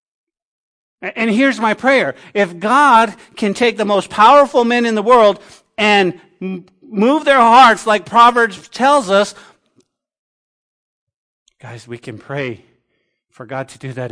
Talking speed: 135 wpm